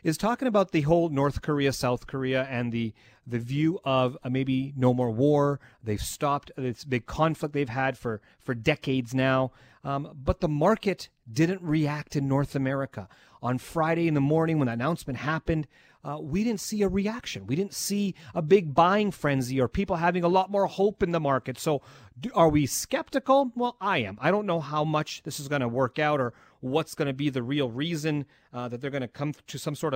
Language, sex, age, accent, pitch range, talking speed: English, male, 30-49, American, 130-160 Hz, 210 wpm